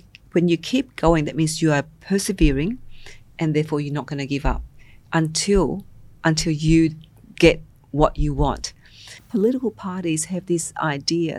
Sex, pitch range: female, 140-170 Hz